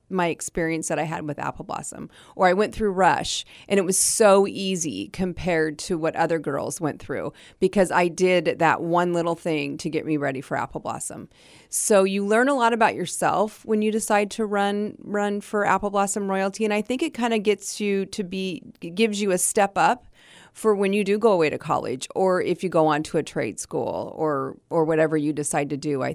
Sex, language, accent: female, English, American